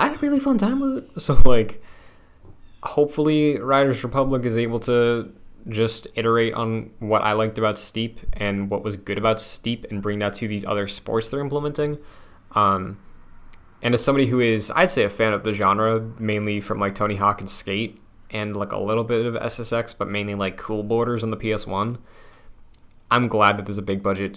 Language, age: English, 20-39